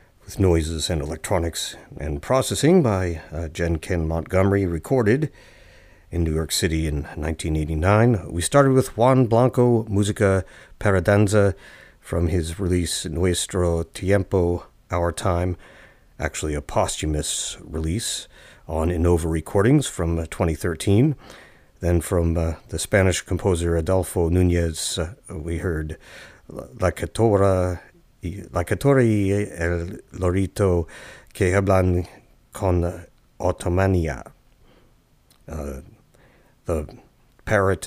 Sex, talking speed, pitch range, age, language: male, 95 wpm, 85-100 Hz, 50-69, English